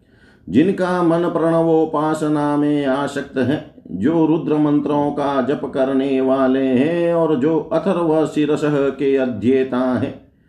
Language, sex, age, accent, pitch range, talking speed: Hindi, male, 50-69, native, 130-160 Hz, 115 wpm